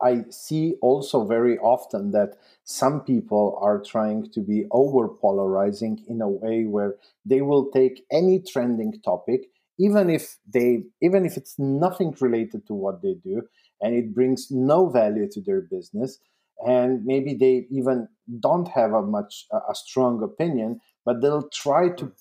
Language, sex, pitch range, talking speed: English, male, 110-140 Hz, 160 wpm